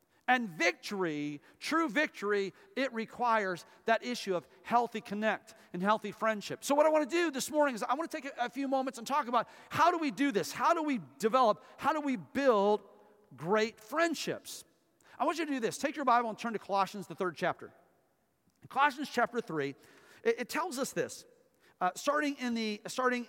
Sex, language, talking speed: male, English, 200 wpm